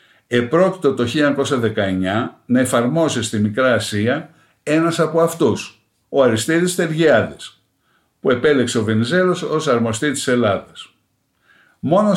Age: 60-79